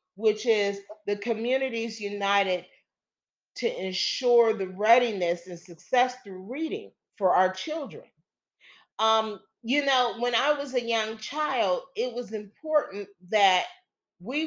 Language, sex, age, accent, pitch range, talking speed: English, female, 40-59, American, 185-255 Hz, 125 wpm